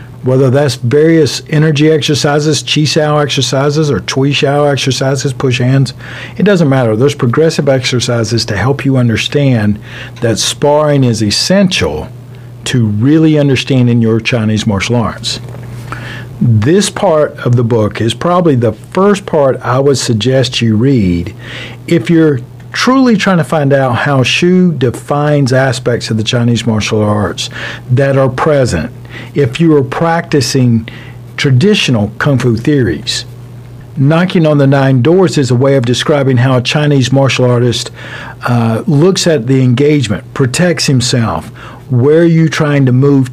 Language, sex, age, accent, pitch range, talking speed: English, male, 50-69, American, 120-150 Hz, 145 wpm